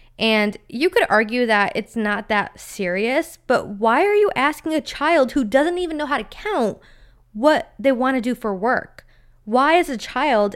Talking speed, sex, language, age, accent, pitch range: 195 wpm, female, English, 20-39, American, 205-270 Hz